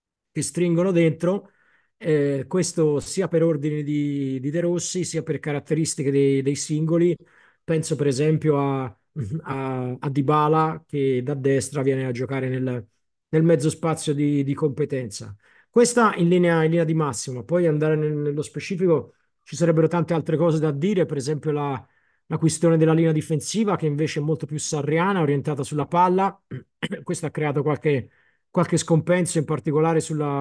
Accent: native